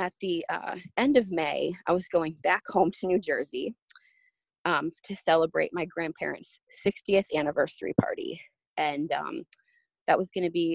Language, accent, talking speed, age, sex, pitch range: English, American, 160 wpm, 20-39, female, 160-225 Hz